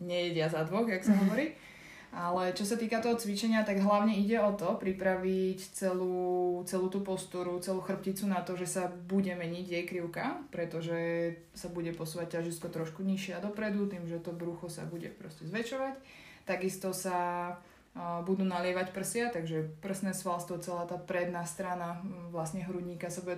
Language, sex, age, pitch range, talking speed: Slovak, female, 20-39, 175-195 Hz, 170 wpm